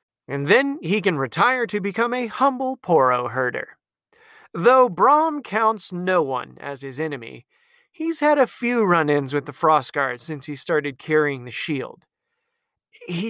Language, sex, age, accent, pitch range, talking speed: English, male, 30-49, American, 145-245 Hz, 155 wpm